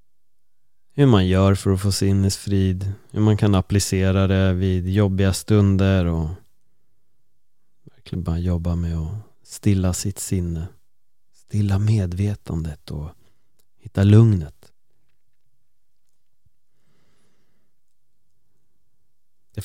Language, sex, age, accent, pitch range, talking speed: Swedish, male, 30-49, native, 90-105 Hz, 90 wpm